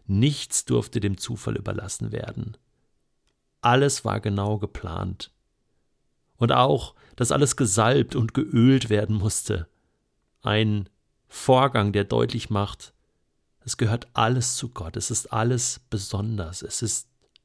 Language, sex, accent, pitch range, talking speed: German, male, German, 105-130 Hz, 120 wpm